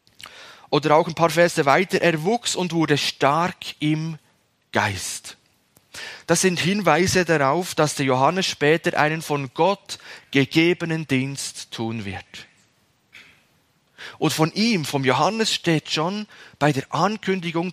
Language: German